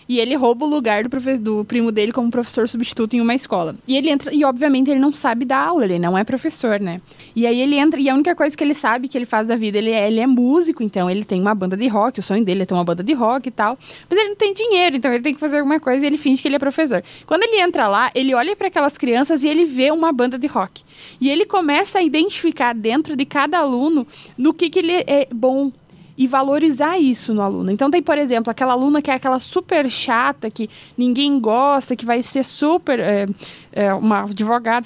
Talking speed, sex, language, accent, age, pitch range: 250 wpm, female, Portuguese, Brazilian, 20-39, 230-285 Hz